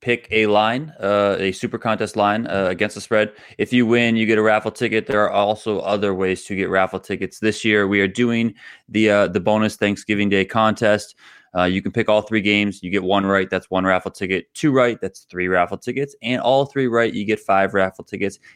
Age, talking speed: 20-39, 230 wpm